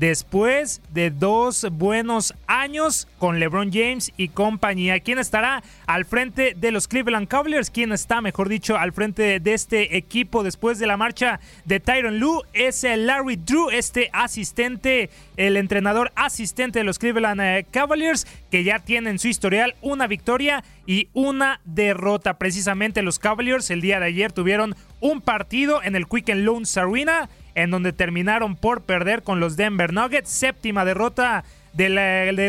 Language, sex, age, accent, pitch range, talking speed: Spanish, male, 30-49, Mexican, 195-245 Hz, 160 wpm